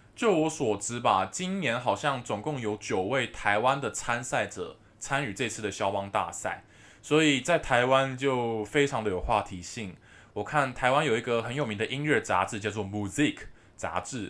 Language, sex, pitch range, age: Chinese, male, 100-135 Hz, 20-39